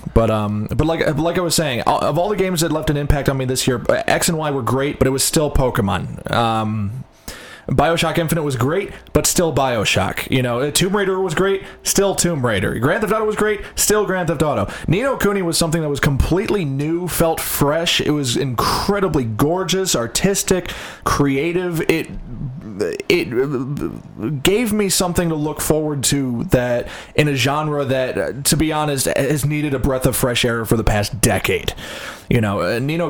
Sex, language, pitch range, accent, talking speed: male, English, 125-165 Hz, American, 185 wpm